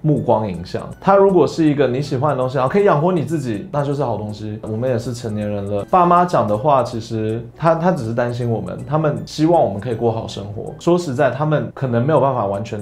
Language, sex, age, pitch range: Chinese, male, 20-39, 105-150 Hz